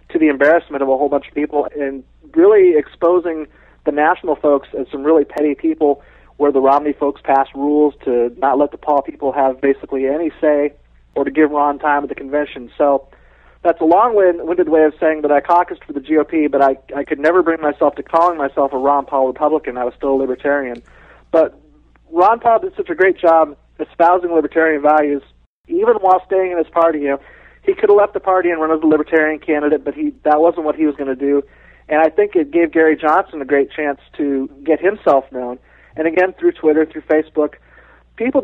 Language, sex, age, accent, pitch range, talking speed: English, male, 40-59, American, 140-170 Hz, 210 wpm